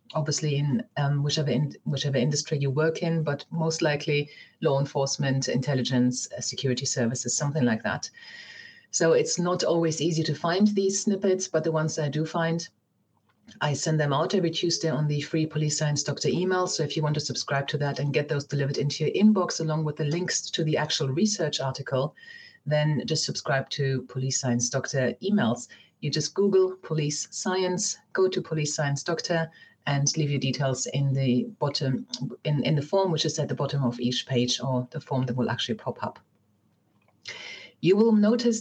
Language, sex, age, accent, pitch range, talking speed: English, female, 30-49, German, 140-175 Hz, 190 wpm